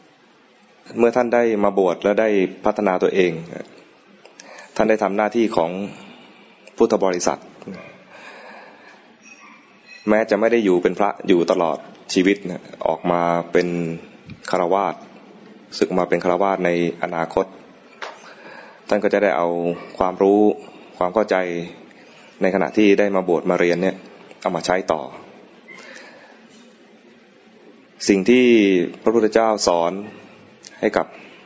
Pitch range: 90-105 Hz